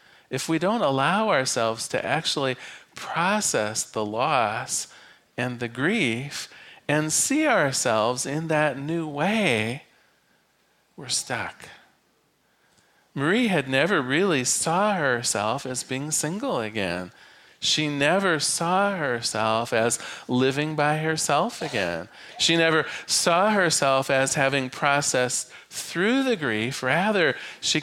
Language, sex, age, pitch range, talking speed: English, male, 40-59, 125-165 Hz, 115 wpm